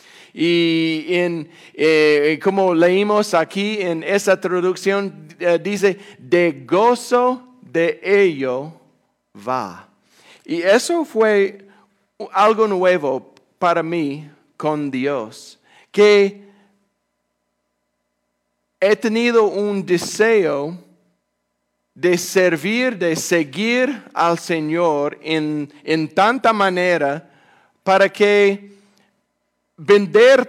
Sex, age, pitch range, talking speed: male, 40-59, 170-210 Hz, 85 wpm